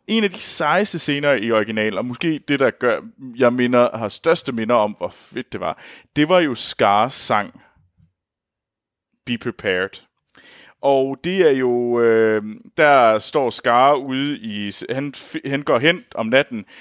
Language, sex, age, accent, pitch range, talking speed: Danish, male, 30-49, native, 110-150 Hz, 160 wpm